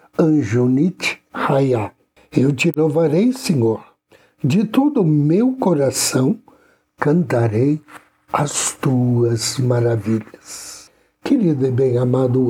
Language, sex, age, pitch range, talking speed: Portuguese, male, 60-79, 115-170 Hz, 85 wpm